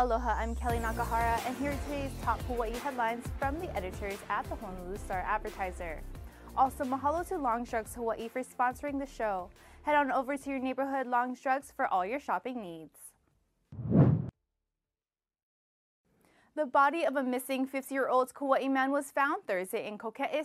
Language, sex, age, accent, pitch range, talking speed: English, female, 20-39, American, 230-275 Hz, 160 wpm